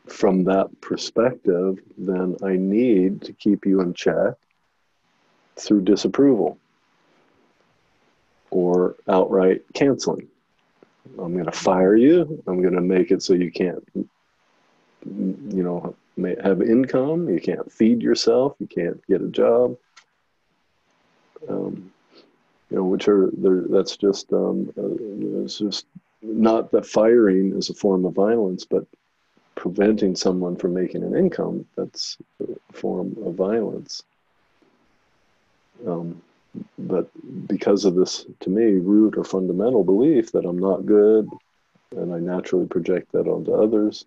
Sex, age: male, 40-59